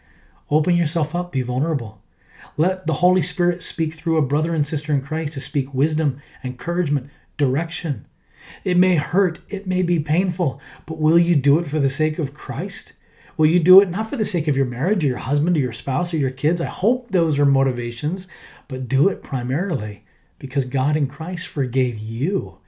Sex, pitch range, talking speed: male, 135-180 Hz, 195 wpm